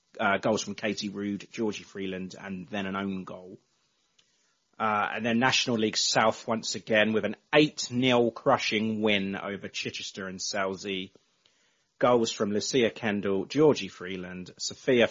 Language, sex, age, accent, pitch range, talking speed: English, male, 30-49, British, 95-120 Hz, 145 wpm